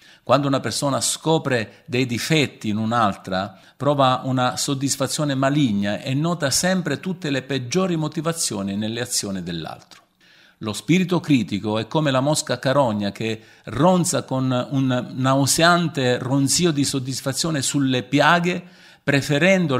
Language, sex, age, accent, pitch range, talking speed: Italian, male, 50-69, native, 115-150 Hz, 125 wpm